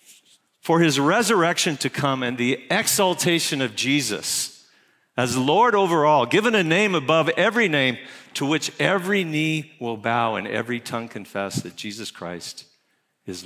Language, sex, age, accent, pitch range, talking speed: English, male, 50-69, American, 120-165 Hz, 150 wpm